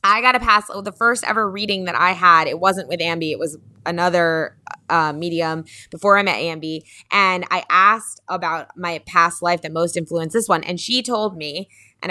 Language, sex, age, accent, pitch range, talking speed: English, female, 20-39, American, 160-190 Hz, 210 wpm